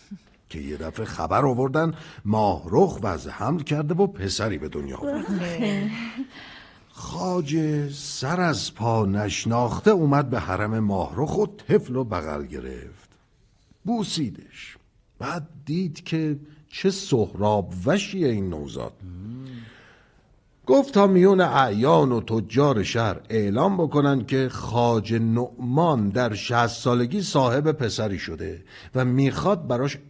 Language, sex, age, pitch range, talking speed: Persian, male, 50-69, 100-150 Hz, 120 wpm